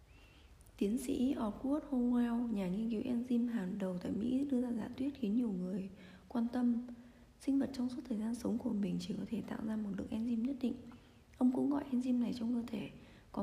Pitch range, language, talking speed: 215-255 Hz, Vietnamese, 220 wpm